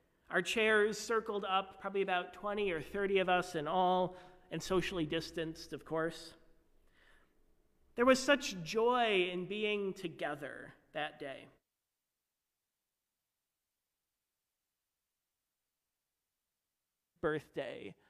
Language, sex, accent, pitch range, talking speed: English, male, American, 160-210 Hz, 95 wpm